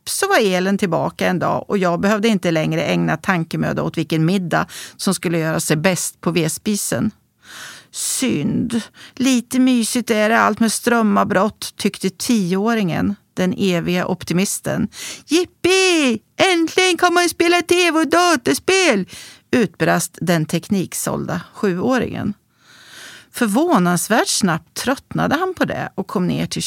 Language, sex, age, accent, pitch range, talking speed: Swedish, female, 40-59, native, 185-290 Hz, 130 wpm